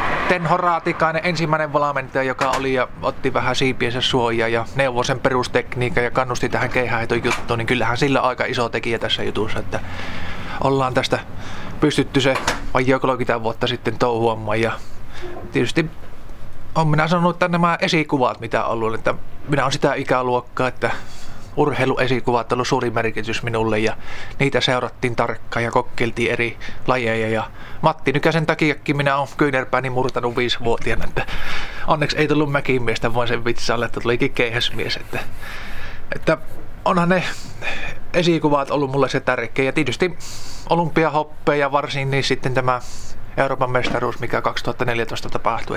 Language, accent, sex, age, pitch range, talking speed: Finnish, native, male, 20-39, 115-140 Hz, 140 wpm